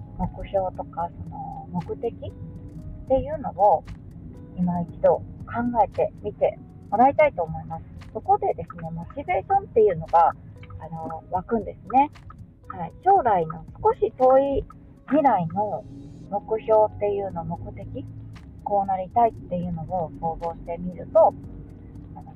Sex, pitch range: female, 170-240 Hz